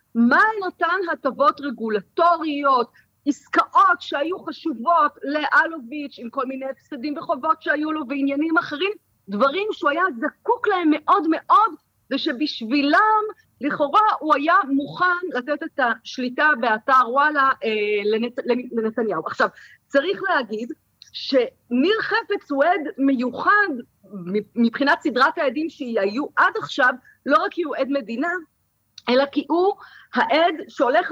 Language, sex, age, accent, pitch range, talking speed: Hebrew, female, 40-59, native, 270-345 Hz, 115 wpm